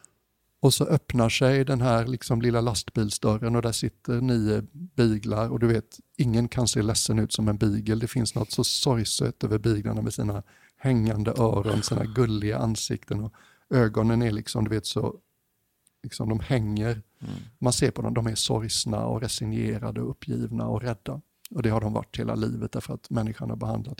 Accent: Swedish